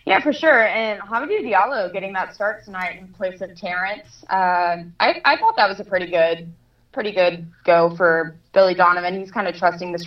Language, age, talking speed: English, 20-39, 205 wpm